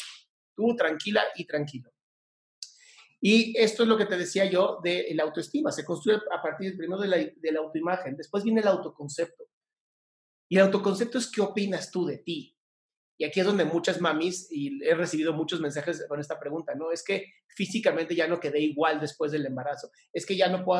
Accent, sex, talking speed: Mexican, male, 195 wpm